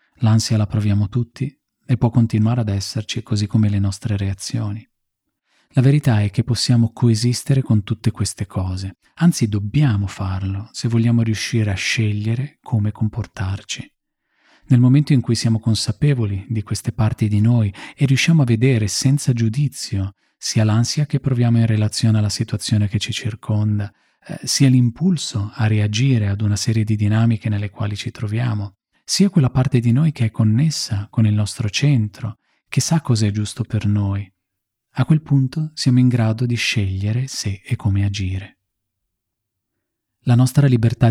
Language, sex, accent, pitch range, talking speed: Italian, male, native, 105-125 Hz, 160 wpm